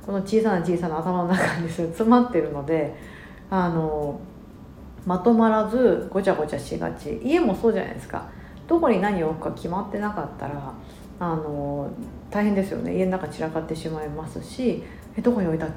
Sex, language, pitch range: female, Japanese, 160-230 Hz